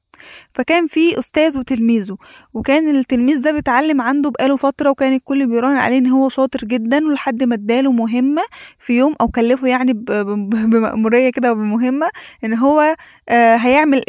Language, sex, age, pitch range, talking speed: Arabic, female, 10-29, 245-315 Hz, 145 wpm